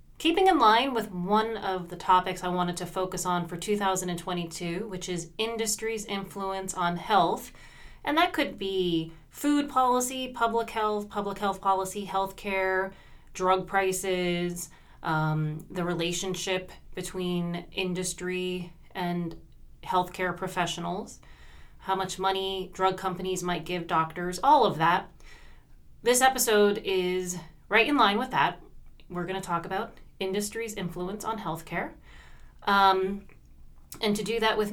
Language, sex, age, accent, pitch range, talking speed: English, female, 30-49, American, 180-220 Hz, 135 wpm